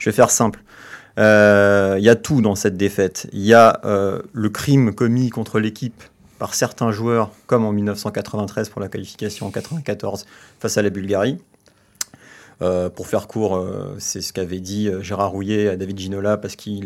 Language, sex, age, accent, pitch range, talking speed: French, male, 30-49, French, 100-120 Hz, 180 wpm